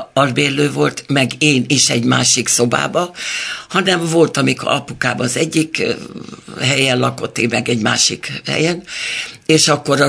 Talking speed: 145 wpm